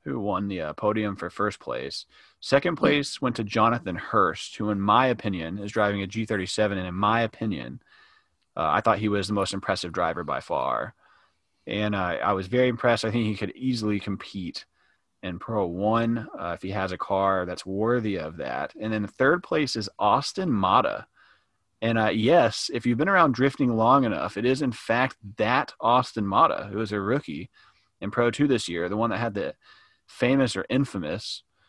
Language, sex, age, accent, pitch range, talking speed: English, male, 30-49, American, 100-120 Hz, 195 wpm